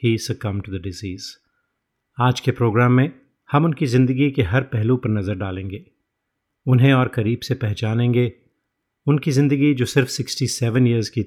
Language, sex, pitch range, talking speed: Hindi, male, 110-130 Hz, 170 wpm